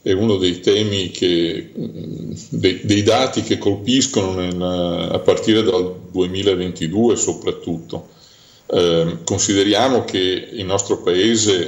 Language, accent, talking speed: Italian, native, 115 wpm